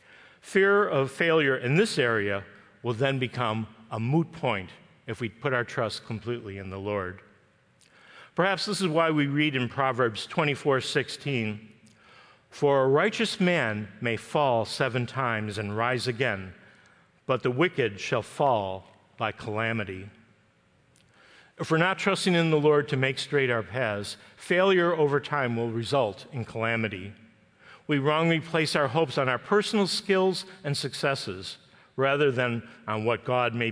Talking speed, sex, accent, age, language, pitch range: 150 wpm, male, American, 50-69, English, 110-165 Hz